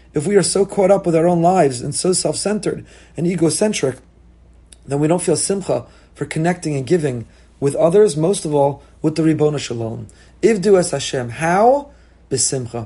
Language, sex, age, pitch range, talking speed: English, male, 30-49, 140-190 Hz, 185 wpm